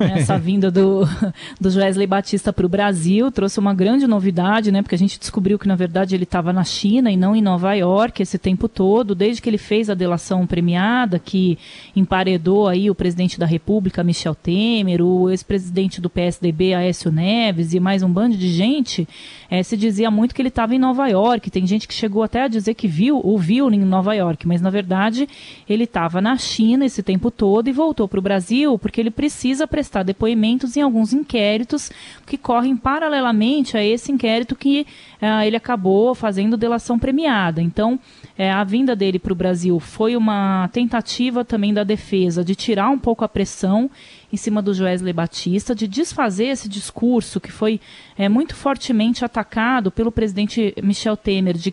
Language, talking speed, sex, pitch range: Portuguese, 185 wpm, female, 190-225 Hz